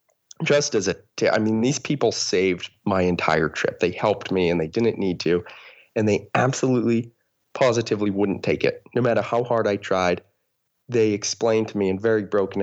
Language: English